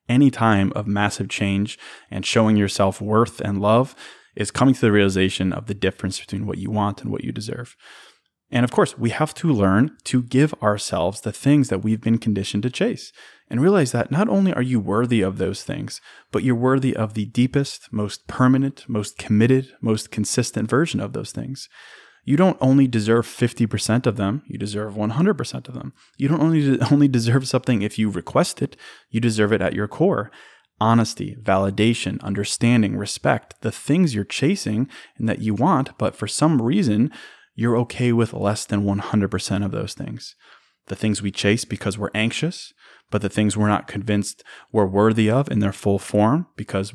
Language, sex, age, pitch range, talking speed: English, male, 20-39, 100-130 Hz, 185 wpm